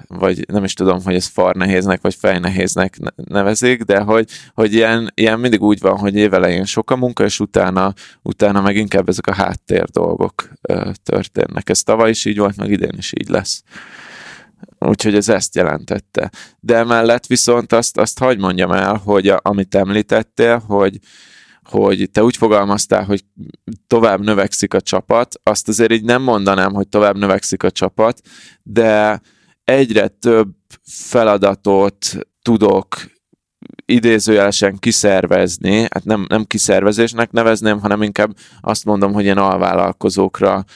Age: 20-39